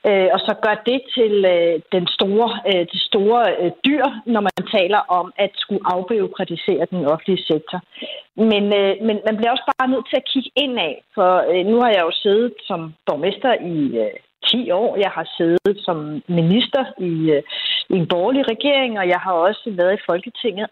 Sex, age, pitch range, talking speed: female, 30-49, 185-245 Hz, 195 wpm